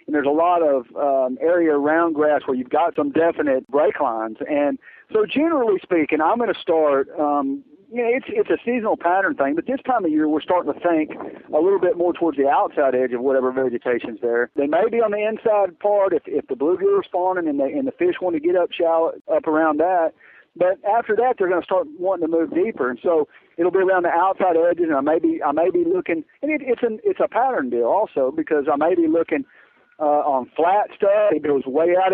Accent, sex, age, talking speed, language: American, male, 50-69, 245 wpm, English